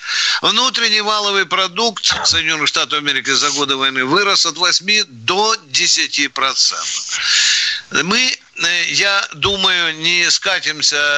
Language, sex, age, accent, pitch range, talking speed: Russian, male, 50-69, native, 155-220 Hz, 100 wpm